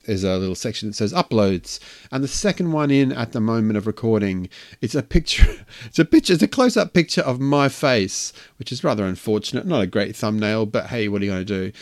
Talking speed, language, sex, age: 235 wpm, English, male, 30-49